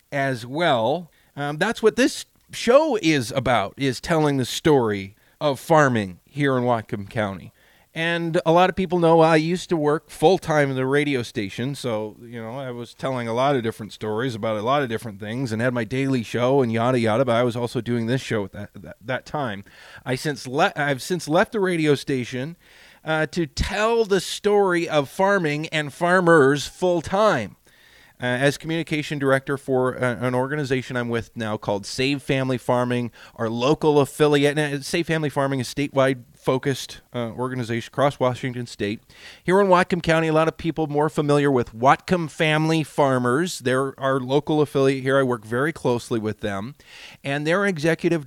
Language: English